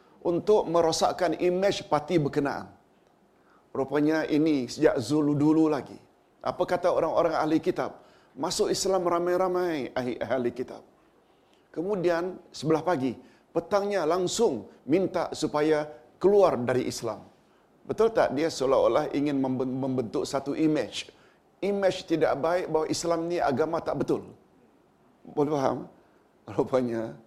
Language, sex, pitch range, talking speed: Malayalam, male, 135-170 Hz, 115 wpm